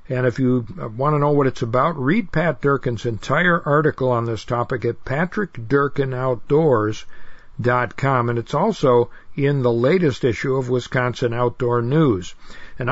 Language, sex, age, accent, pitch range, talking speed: English, male, 60-79, American, 120-150 Hz, 145 wpm